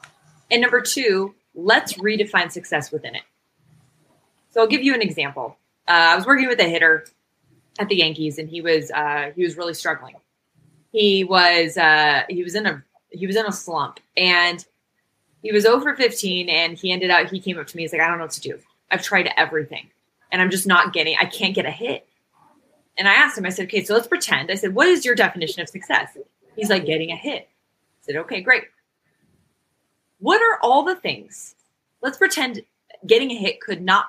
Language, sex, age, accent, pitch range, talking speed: English, female, 20-39, American, 165-230 Hz, 210 wpm